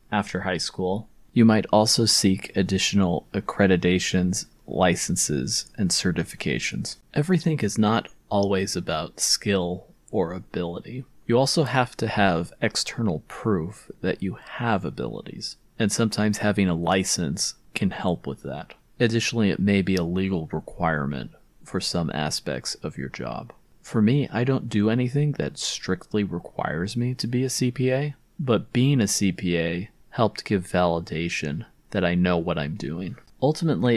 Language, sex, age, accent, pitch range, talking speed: English, male, 30-49, American, 95-115 Hz, 145 wpm